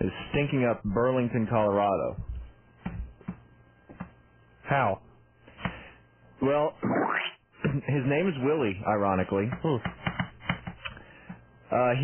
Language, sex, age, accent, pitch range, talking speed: English, male, 30-49, American, 105-140 Hz, 65 wpm